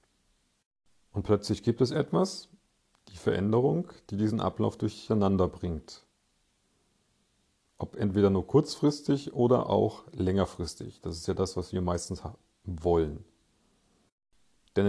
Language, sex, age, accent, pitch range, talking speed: German, male, 40-59, German, 95-130 Hz, 115 wpm